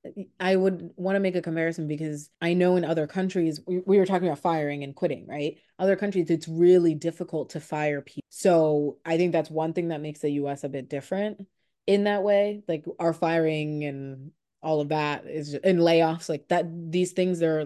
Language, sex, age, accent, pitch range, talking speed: English, female, 30-49, American, 150-180 Hz, 205 wpm